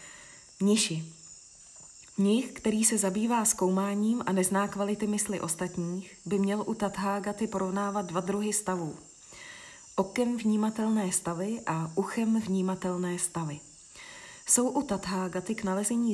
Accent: native